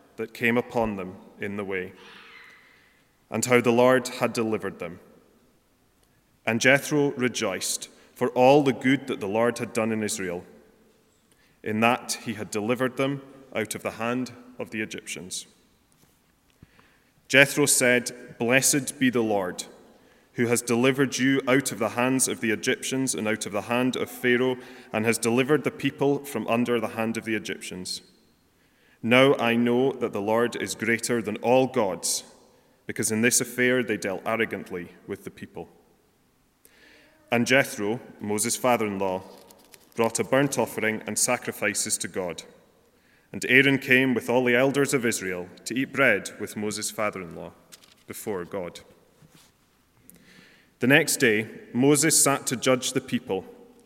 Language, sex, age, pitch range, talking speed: English, male, 30-49, 110-130 Hz, 150 wpm